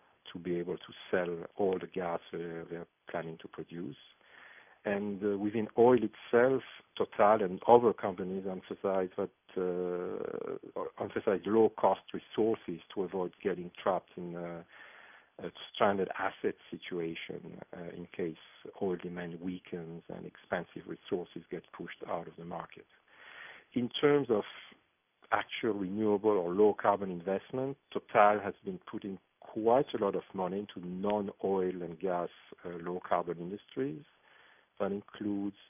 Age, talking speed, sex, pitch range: 50-69, 130 wpm, male, 90-105 Hz